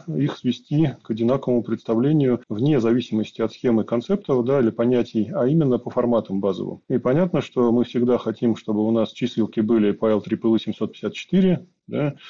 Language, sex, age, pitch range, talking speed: Russian, male, 20-39, 110-135 Hz, 160 wpm